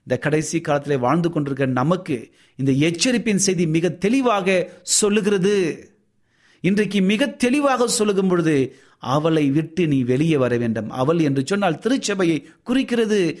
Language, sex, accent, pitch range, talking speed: Tamil, male, native, 150-215 Hz, 120 wpm